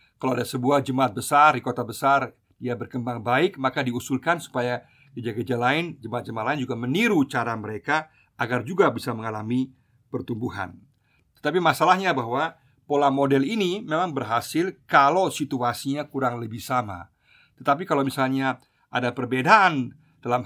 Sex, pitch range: male, 120-145 Hz